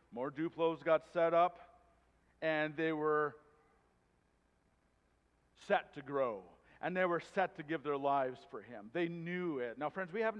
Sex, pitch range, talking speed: male, 145-195 Hz, 160 wpm